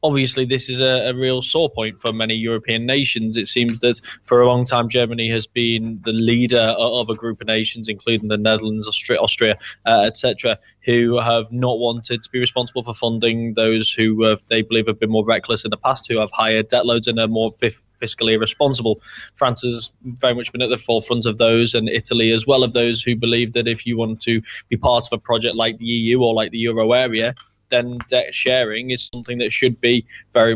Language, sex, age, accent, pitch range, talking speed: English, male, 10-29, British, 110-125 Hz, 215 wpm